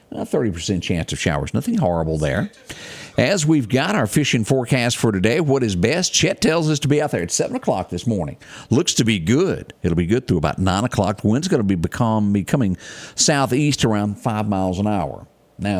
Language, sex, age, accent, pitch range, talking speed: English, male, 50-69, American, 90-135 Hz, 215 wpm